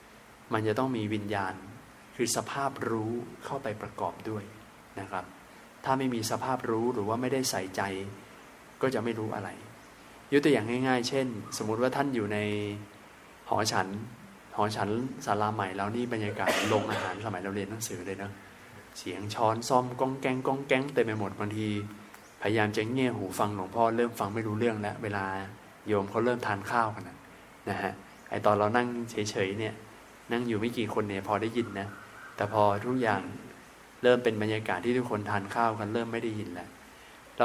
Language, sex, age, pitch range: Thai, male, 20-39, 105-125 Hz